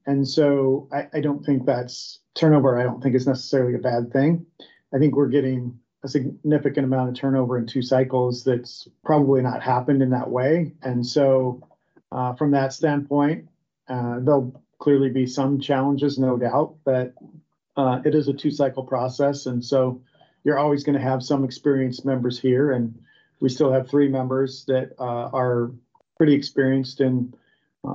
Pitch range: 130-145 Hz